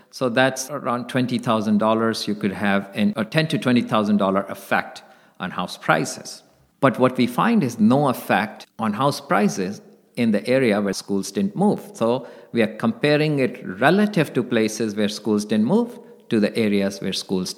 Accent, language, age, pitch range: Indian, English, 50-69, 110-165 Hz